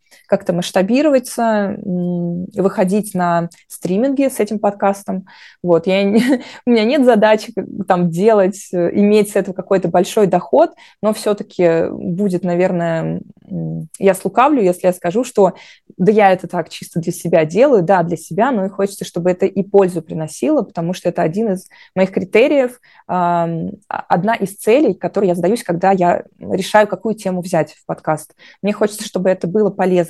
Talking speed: 160 wpm